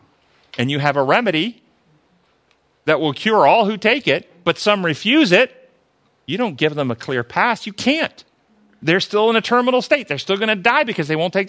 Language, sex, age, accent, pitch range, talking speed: English, male, 40-59, American, 140-215 Hz, 210 wpm